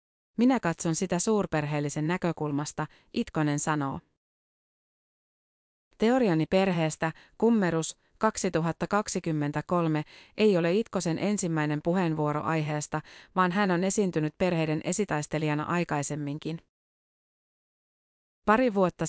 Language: Finnish